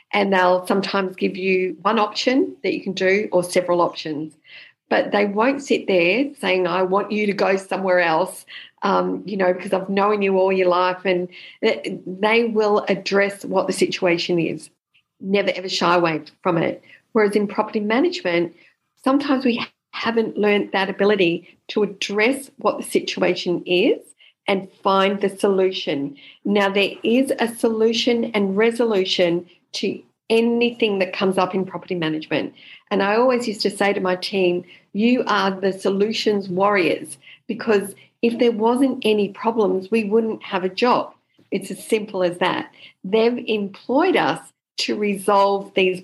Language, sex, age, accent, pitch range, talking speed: English, female, 50-69, Australian, 185-225 Hz, 160 wpm